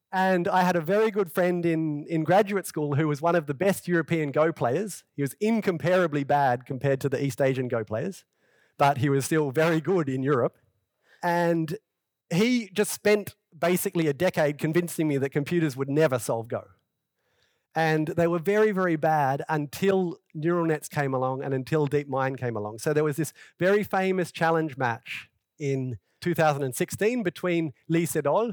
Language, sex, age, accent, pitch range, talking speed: English, male, 30-49, Australian, 135-180 Hz, 175 wpm